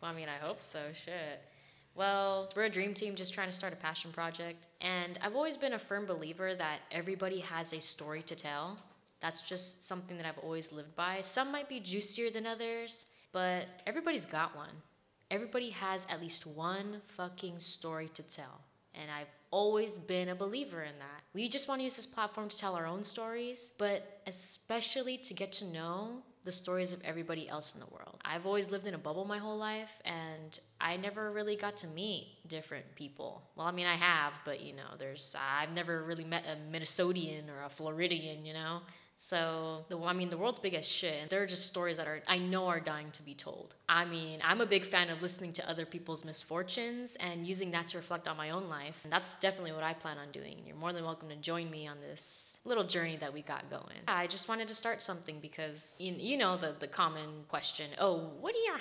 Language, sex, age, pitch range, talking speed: English, female, 20-39, 160-200 Hz, 220 wpm